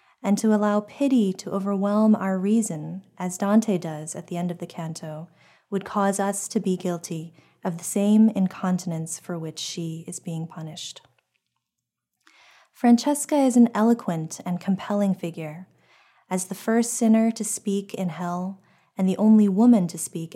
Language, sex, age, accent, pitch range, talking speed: English, female, 20-39, American, 175-205 Hz, 160 wpm